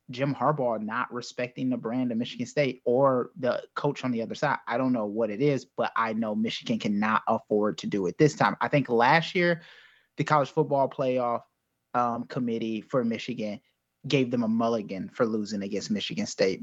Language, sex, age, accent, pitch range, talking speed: English, male, 20-39, American, 115-145 Hz, 195 wpm